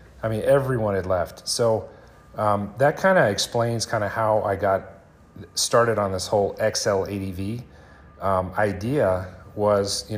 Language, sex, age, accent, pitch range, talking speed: English, male, 30-49, American, 95-115 Hz, 145 wpm